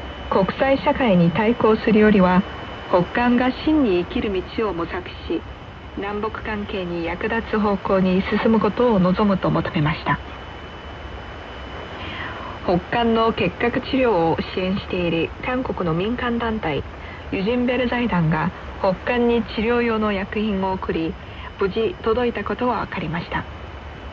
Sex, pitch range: female, 180-235 Hz